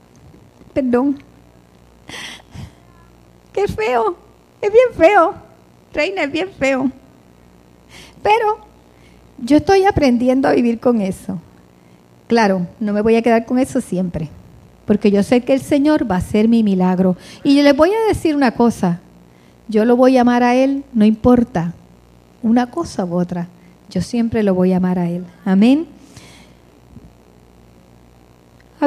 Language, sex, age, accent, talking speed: English, female, 40-59, American, 140 wpm